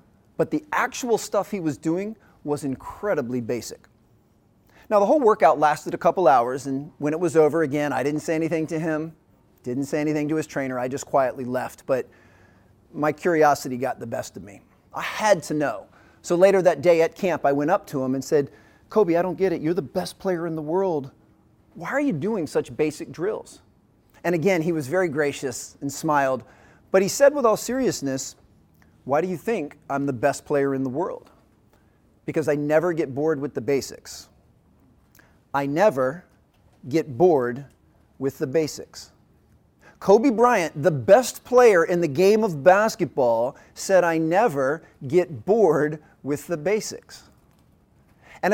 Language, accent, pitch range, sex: English, American, 140-185 Hz, male